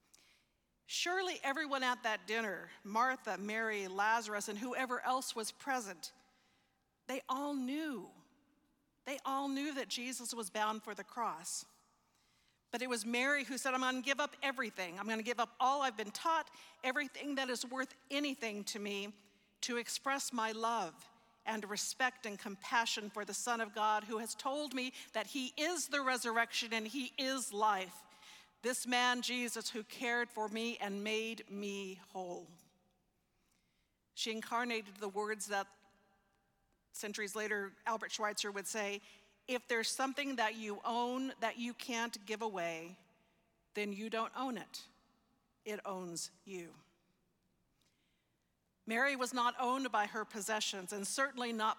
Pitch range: 210-255 Hz